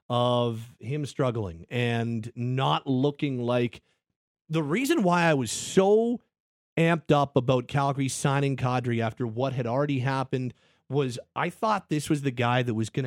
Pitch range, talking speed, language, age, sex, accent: 125-155 Hz, 155 wpm, English, 40-59, male, American